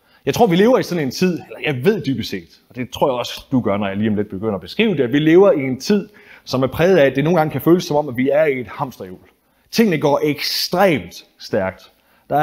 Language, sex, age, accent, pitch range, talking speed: Danish, male, 30-49, native, 125-175 Hz, 280 wpm